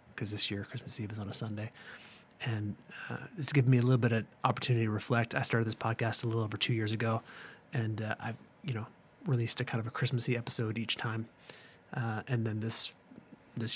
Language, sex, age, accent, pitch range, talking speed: English, male, 30-49, American, 110-125 Hz, 220 wpm